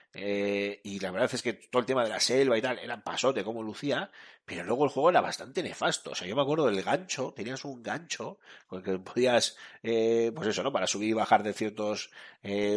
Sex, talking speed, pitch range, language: male, 235 wpm, 100-125 Hz, Spanish